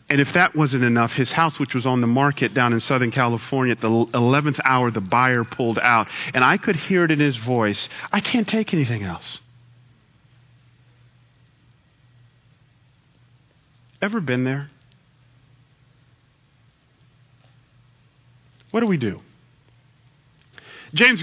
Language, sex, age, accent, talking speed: English, male, 40-59, American, 125 wpm